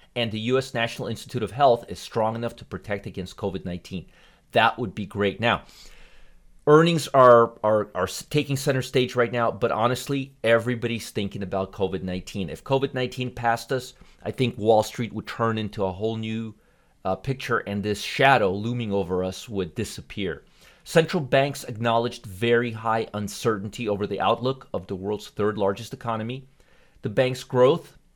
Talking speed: 160 wpm